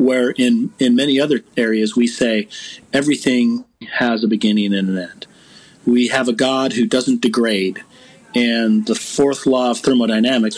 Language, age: English, 40-59